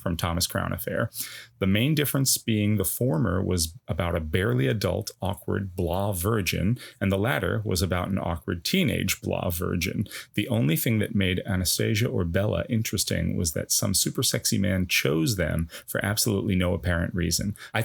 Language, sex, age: English, male, 30-49